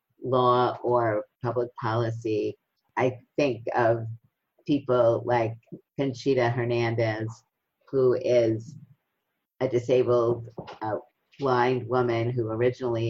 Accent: American